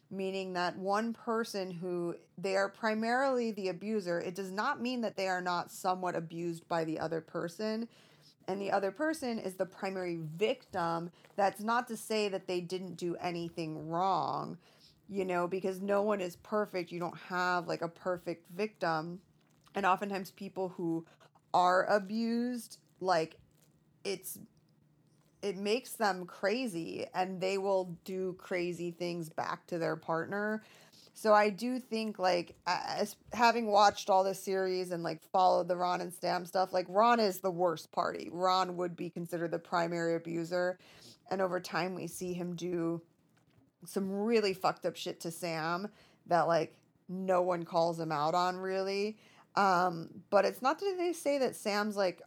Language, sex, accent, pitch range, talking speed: English, female, American, 170-200 Hz, 165 wpm